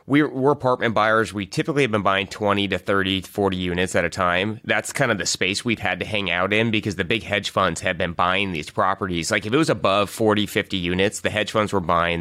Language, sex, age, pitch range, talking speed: English, male, 30-49, 95-120 Hz, 250 wpm